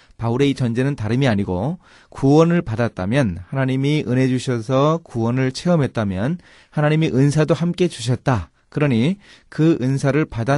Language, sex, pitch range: Korean, male, 105-165 Hz